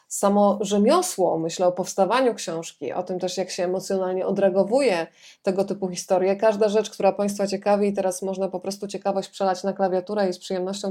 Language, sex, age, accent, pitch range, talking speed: Polish, female, 20-39, native, 190-220 Hz, 180 wpm